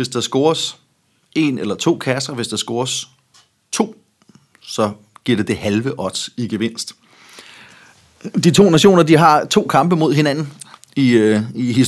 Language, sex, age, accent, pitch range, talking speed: Danish, male, 30-49, native, 120-175 Hz, 145 wpm